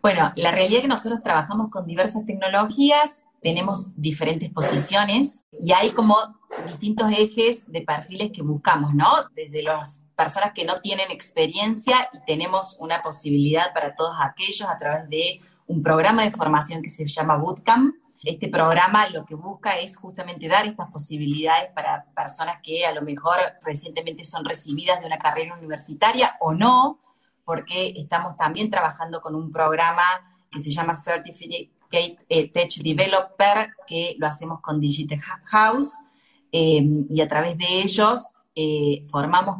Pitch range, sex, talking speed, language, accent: 155-210 Hz, female, 155 wpm, Spanish, Argentinian